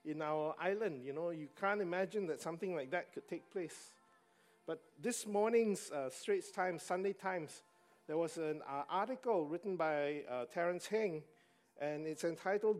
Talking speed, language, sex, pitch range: 170 wpm, English, male, 150-205 Hz